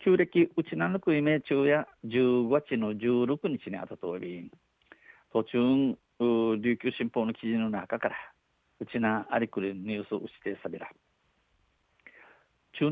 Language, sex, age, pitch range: Japanese, male, 50-69, 110-140 Hz